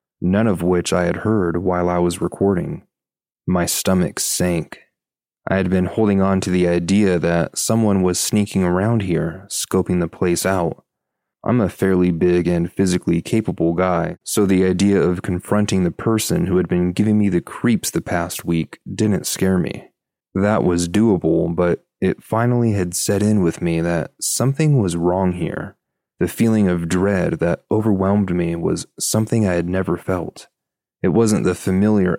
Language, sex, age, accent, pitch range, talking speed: English, male, 30-49, American, 85-100 Hz, 170 wpm